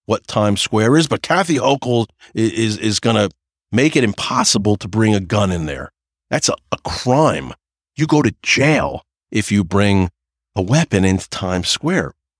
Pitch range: 100-155 Hz